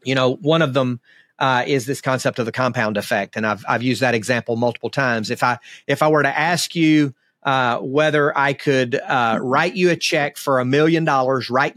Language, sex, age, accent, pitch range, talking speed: English, male, 40-59, American, 125-150 Hz, 220 wpm